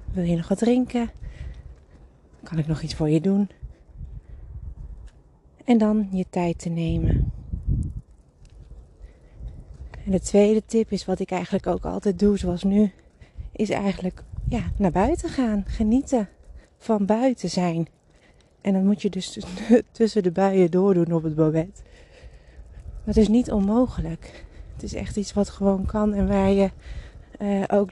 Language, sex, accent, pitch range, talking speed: Dutch, female, Dutch, 170-210 Hz, 145 wpm